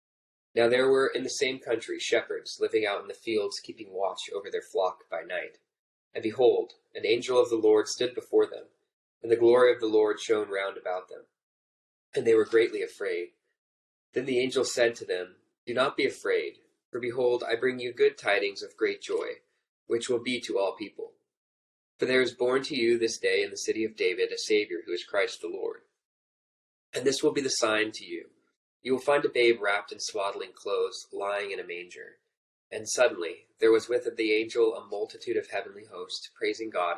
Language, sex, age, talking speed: English, male, 20-39, 205 wpm